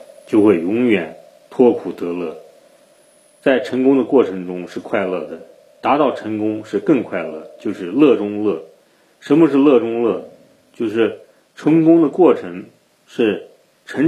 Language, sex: Chinese, male